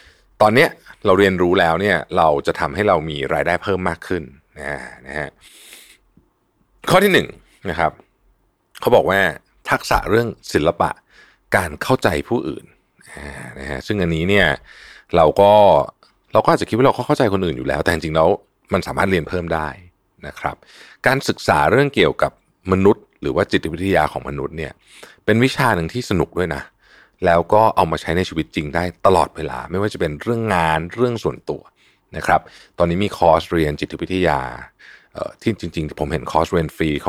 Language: Thai